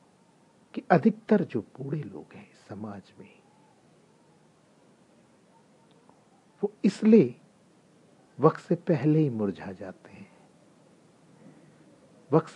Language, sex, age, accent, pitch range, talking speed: English, male, 50-69, Indian, 120-180 Hz, 85 wpm